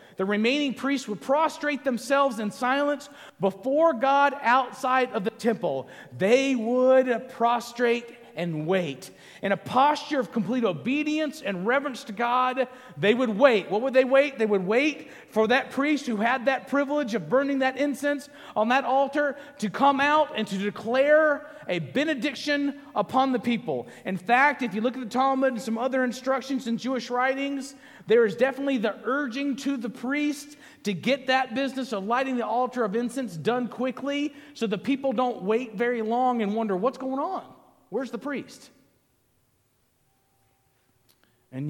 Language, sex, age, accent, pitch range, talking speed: English, male, 40-59, American, 170-270 Hz, 165 wpm